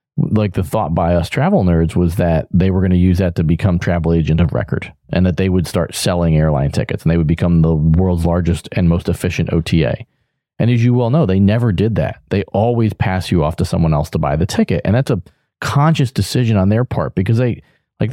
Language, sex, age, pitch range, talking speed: English, male, 40-59, 85-110 Hz, 240 wpm